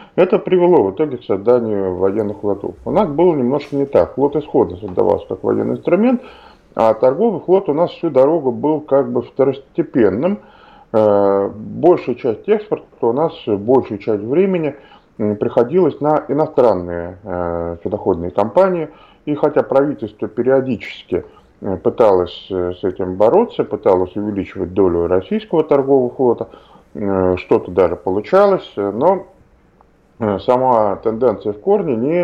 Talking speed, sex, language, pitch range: 125 wpm, male, Russian, 95-155 Hz